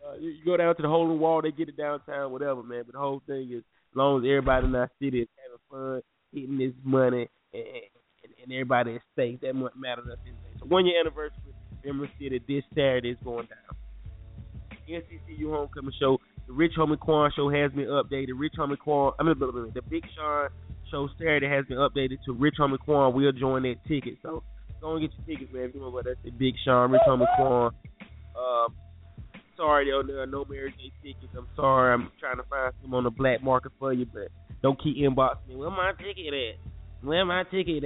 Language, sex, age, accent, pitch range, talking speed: English, male, 20-39, American, 125-150 Hz, 215 wpm